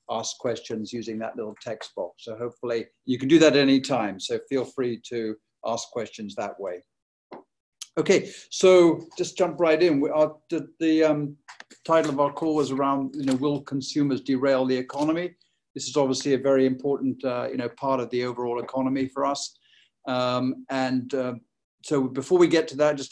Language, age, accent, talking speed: English, 50-69, British, 190 wpm